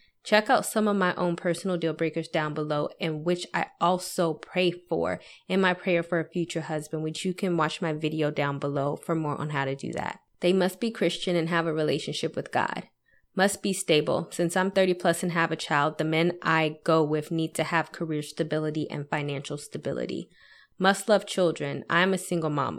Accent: American